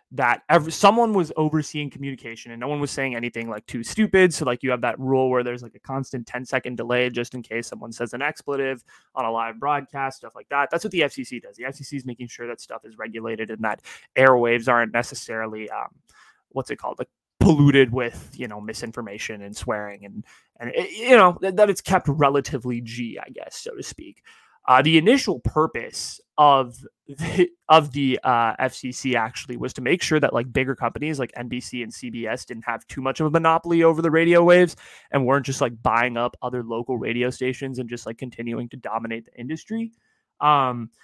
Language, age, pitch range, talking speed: English, 20-39, 120-160 Hz, 205 wpm